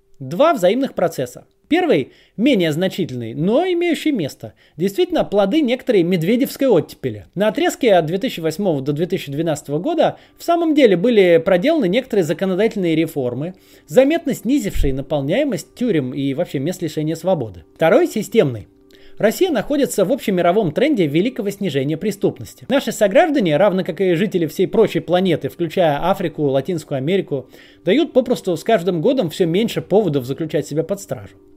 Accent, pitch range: native, 155-230 Hz